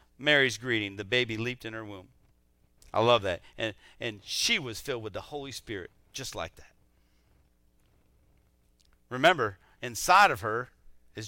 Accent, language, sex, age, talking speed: American, English, male, 40-59, 150 wpm